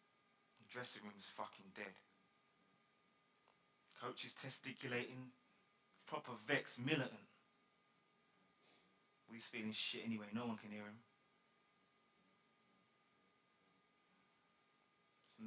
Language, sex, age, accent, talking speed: English, male, 20-39, British, 80 wpm